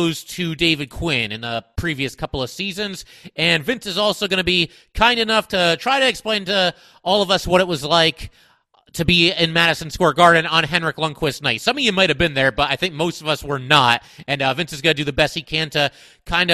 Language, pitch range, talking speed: English, 140-180 Hz, 245 wpm